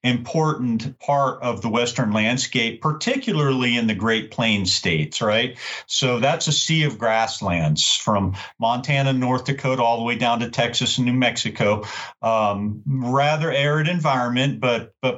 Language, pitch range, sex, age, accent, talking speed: English, 110-140 Hz, male, 40-59, American, 150 wpm